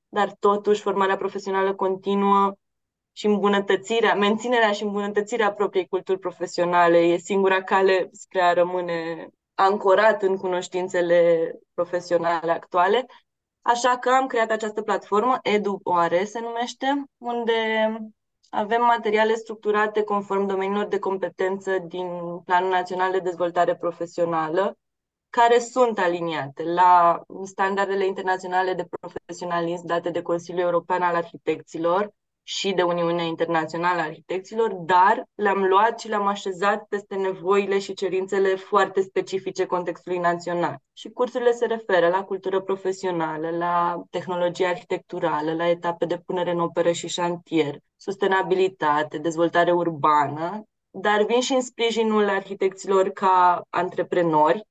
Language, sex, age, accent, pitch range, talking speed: Romanian, female, 20-39, native, 175-205 Hz, 120 wpm